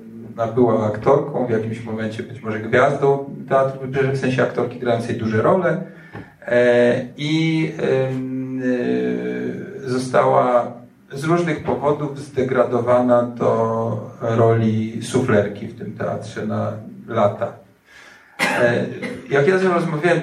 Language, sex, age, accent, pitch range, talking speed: Polish, male, 40-59, native, 115-140 Hz, 100 wpm